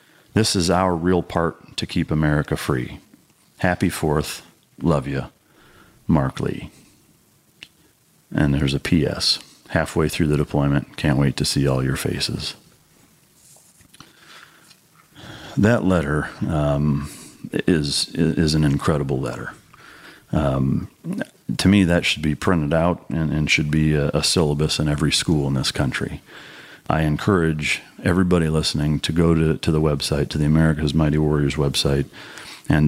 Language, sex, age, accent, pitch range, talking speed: English, male, 40-59, American, 75-85 Hz, 140 wpm